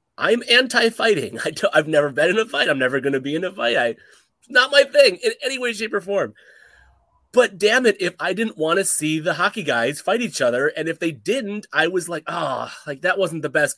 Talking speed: 245 wpm